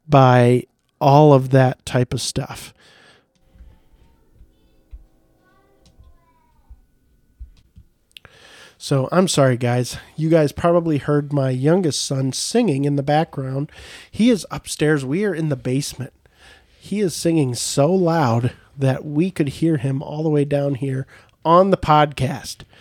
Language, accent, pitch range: English, American, 130-155 Hz